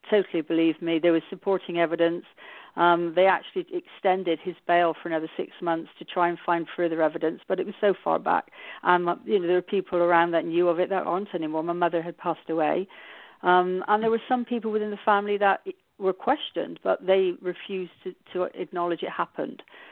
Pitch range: 170-195 Hz